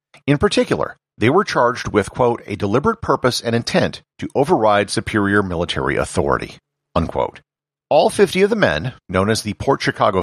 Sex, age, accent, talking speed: male, 50-69, American, 165 wpm